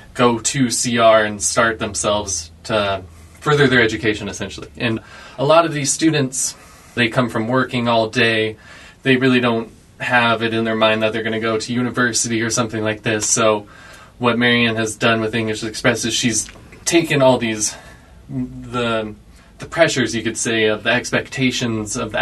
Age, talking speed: 20-39, 180 wpm